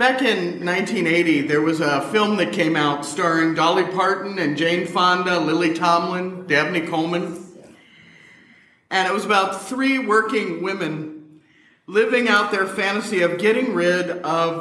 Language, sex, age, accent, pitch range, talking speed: English, male, 50-69, American, 175-220 Hz, 145 wpm